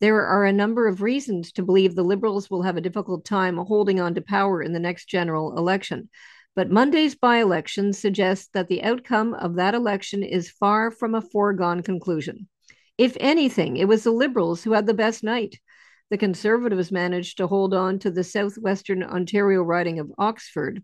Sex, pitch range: female, 185-225 Hz